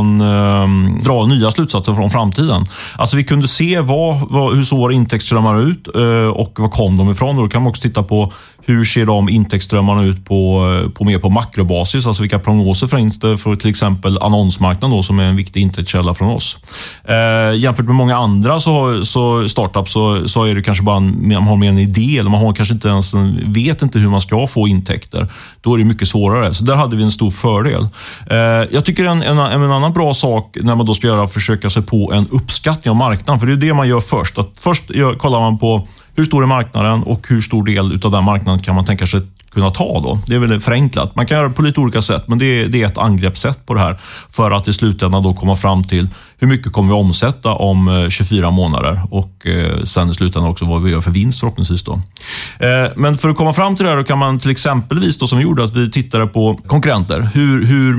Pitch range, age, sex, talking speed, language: 100-125 Hz, 30-49, male, 230 wpm, Swedish